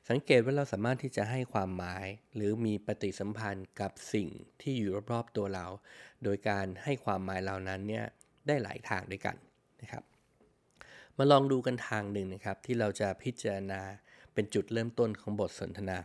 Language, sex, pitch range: Thai, male, 100-120 Hz